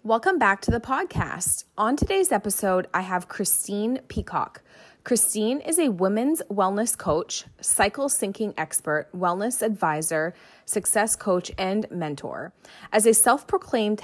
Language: English